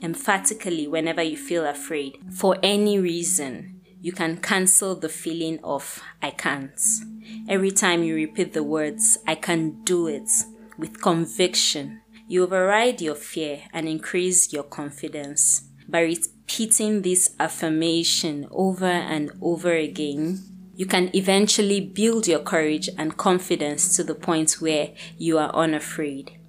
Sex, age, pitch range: female, 20-39, 160-200 Hz